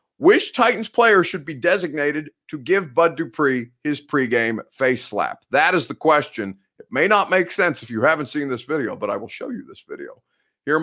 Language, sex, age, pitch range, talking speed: English, male, 30-49, 115-160 Hz, 205 wpm